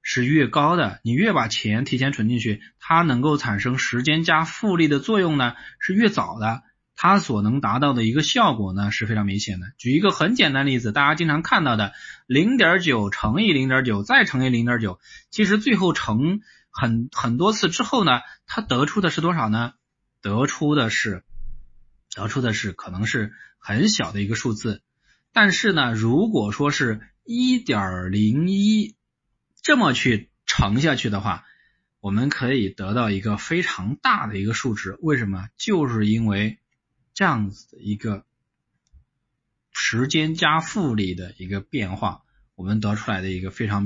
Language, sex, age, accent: Chinese, male, 20-39, native